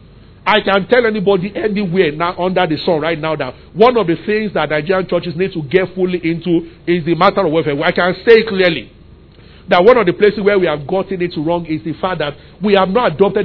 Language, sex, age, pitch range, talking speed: English, male, 50-69, 165-210 Hz, 230 wpm